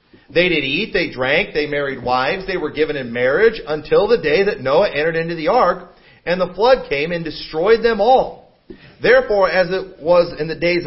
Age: 40-59